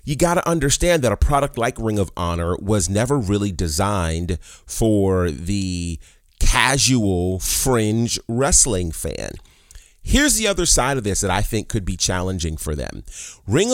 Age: 30-49